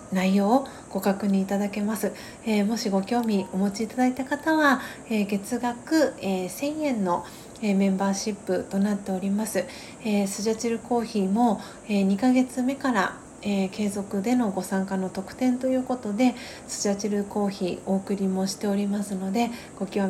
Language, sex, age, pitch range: Japanese, female, 40-59, 195-240 Hz